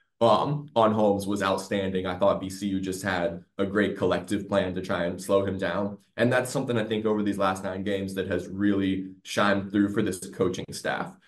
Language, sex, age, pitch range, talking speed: English, male, 20-39, 95-110 Hz, 205 wpm